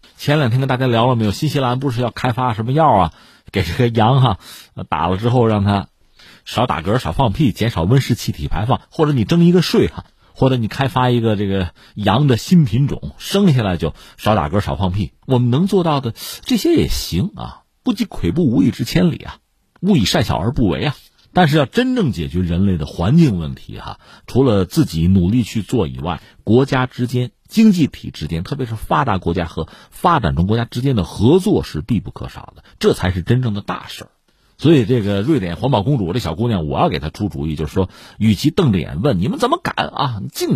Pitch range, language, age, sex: 90-130 Hz, Chinese, 50-69, male